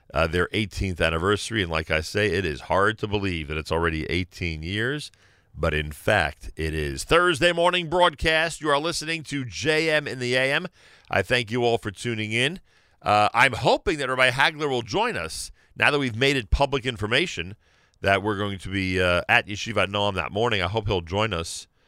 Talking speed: 200 wpm